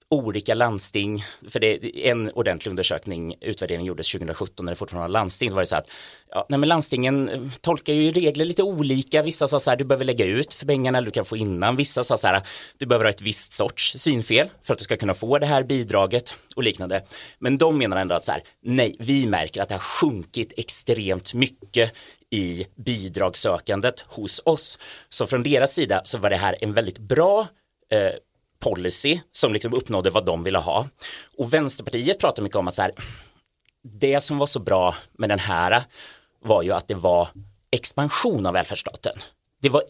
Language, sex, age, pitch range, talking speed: Swedish, male, 30-49, 100-145 Hz, 200 wpm